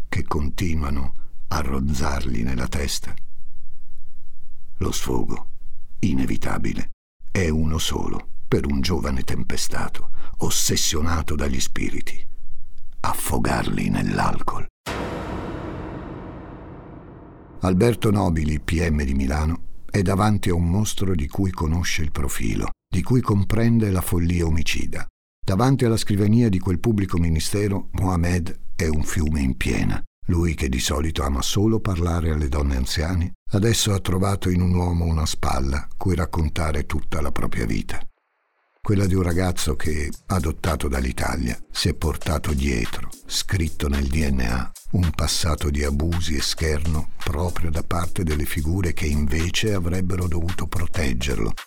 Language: Italian